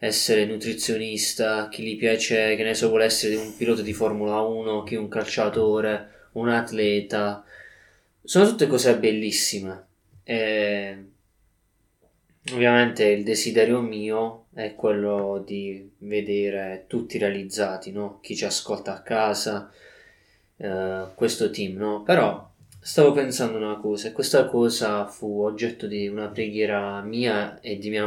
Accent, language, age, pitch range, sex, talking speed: native, Italian, 20-39, 100-115 Hz, male, 135 wpm